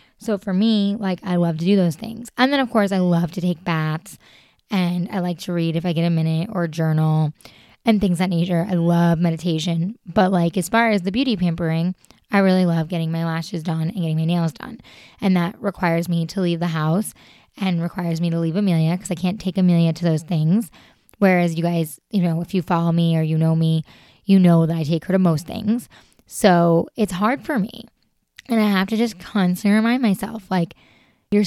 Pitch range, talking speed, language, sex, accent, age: 170-210 Hz, 225 wpm, English, female, American, 20-39